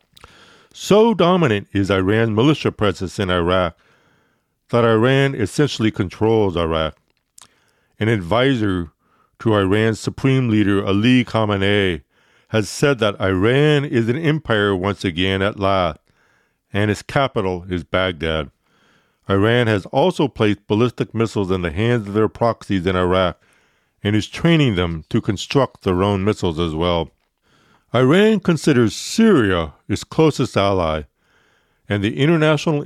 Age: 50-69